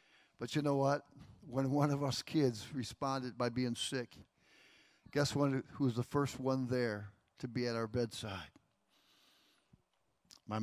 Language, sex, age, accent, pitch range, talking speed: English, male, 50-69, American, 120-155 Hz, 150 wpm